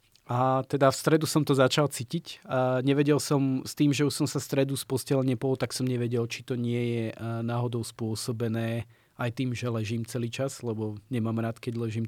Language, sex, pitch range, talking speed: Slovak, male, 120-140 Hz, 200 wpm